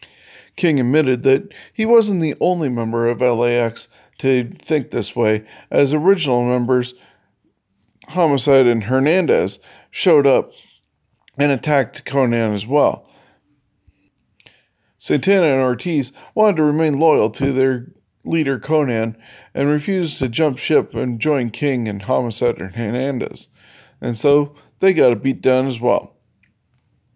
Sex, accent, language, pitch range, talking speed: male, American, English, 120-150 Hz, 130 wpm